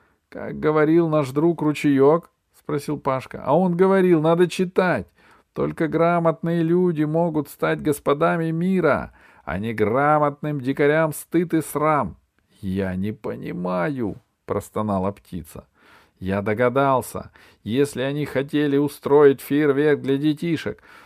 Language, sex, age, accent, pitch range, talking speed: Russian, male, 40-59, native, 130-160 Hz, 125 wpm